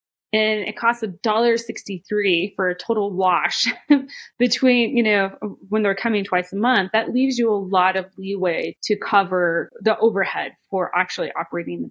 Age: 20-39